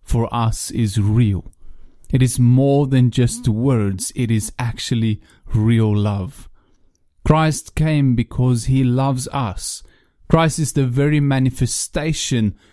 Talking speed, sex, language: 125 wpm, male, English